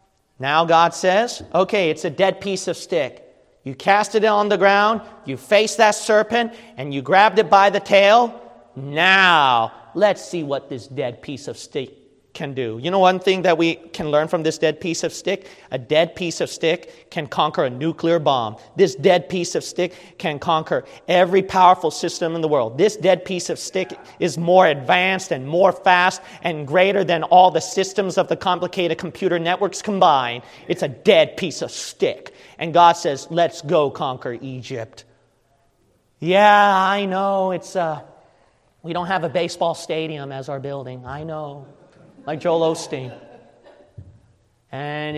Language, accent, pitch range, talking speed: English, American, 155-195 Hz, 175 wpm